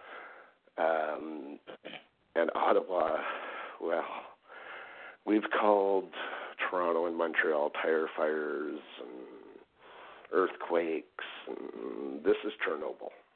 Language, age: English, 50-69